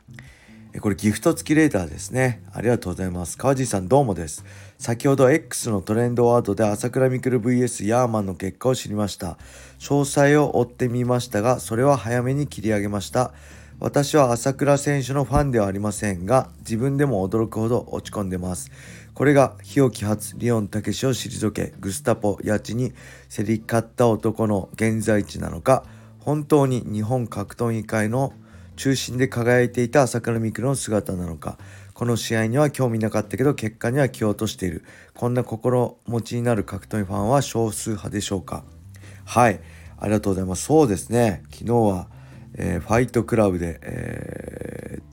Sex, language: male, Japanese